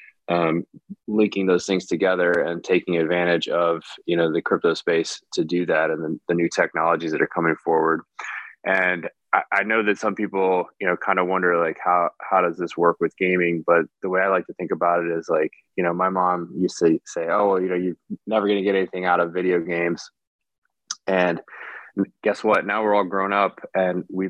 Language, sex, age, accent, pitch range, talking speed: English, male, 20-39, American, 85-95 Hz, 215 wpm